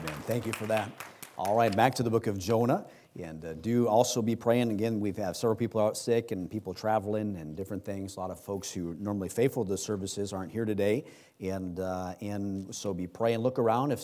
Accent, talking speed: American, 235 wpm